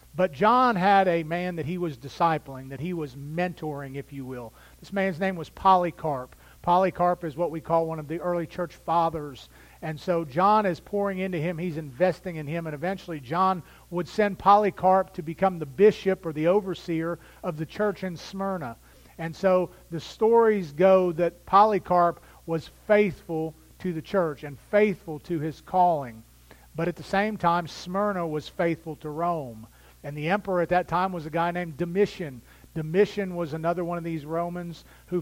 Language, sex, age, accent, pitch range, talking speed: English, male, 40-59, American, 160-190 Hz, 180 wpm